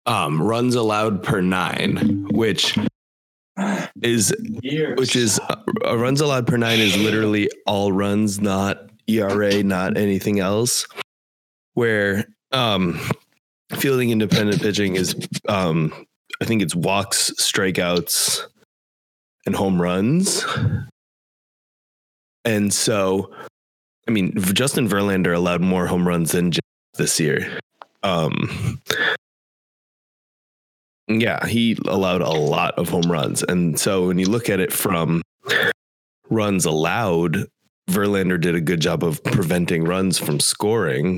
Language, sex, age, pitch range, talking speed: English, male, 20-39, 85-105 Hz, 120 wpm